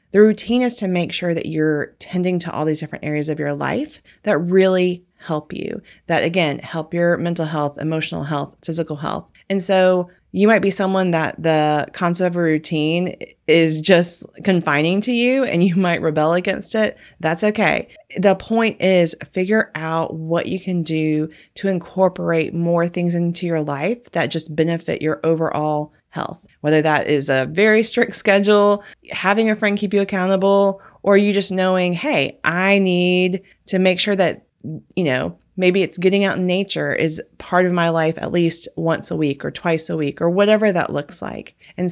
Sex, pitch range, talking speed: female, 160-190 Hz, 185 wpm